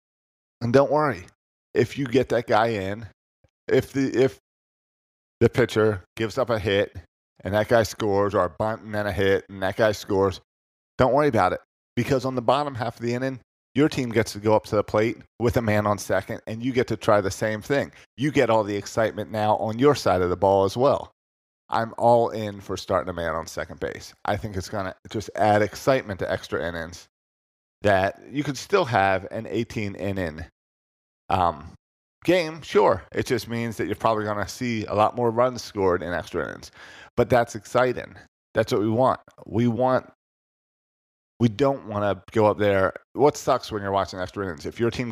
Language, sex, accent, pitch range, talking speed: English, male, American, 95-115 Hz, 205 wpm